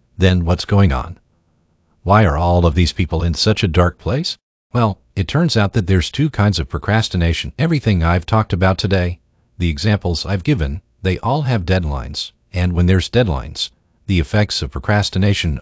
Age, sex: 50-69, male